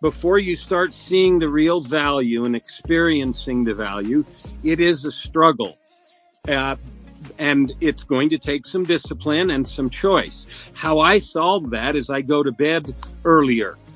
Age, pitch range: 50-69, 135-170 Hz